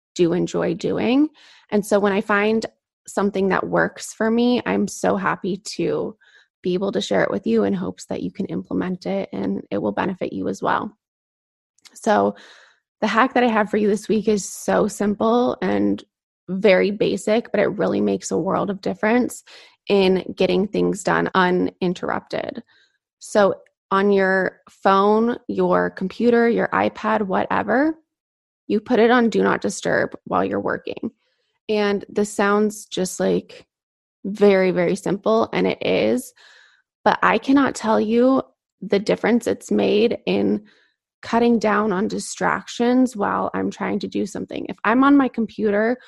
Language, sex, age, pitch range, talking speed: English, female, 20-39, 190-235 Hz, 160 wpm